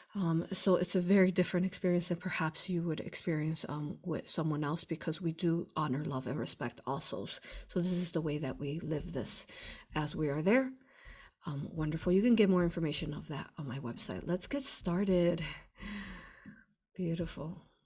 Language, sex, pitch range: English, female, 165-200 Hz